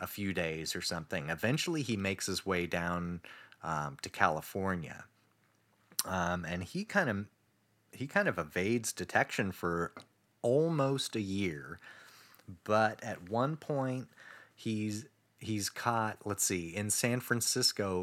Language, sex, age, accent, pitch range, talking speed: English, male, 30-49, American, 90-115 Hz, 135 wpm